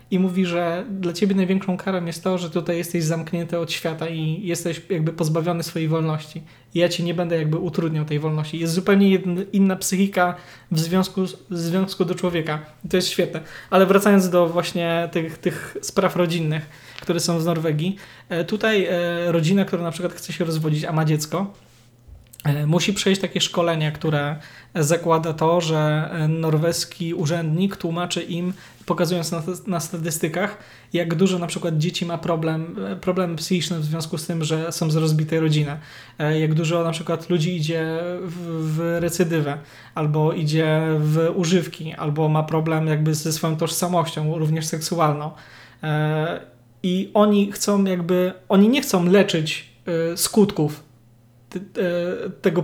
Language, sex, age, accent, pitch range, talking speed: Polish, male, 20-39, native, 160-185 Hz, 150 wpm